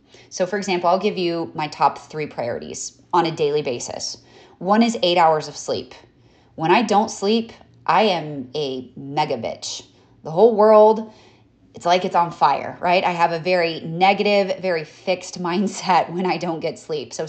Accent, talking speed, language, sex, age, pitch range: American, 180 wpm, English, female, 30-49, 165-215 Hz